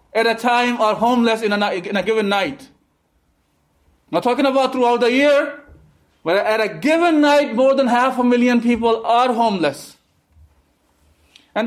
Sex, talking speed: male, 160 wpm